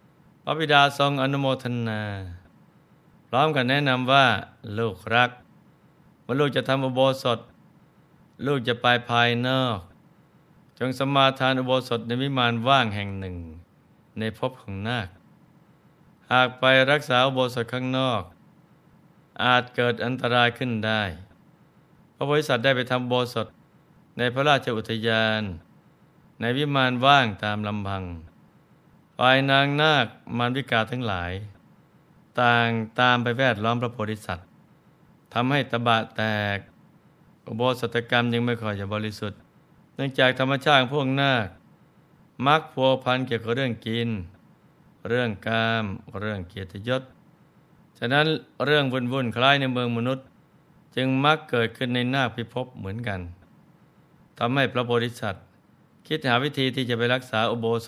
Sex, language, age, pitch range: male, Thai, 20-39, 115-140 Hz